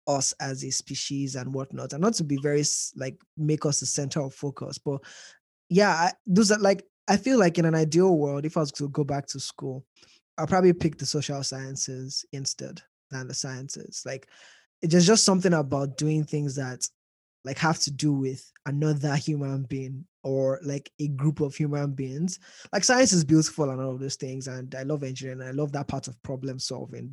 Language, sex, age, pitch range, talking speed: English, male, 20-39, 135-160 Hz, 200 wpm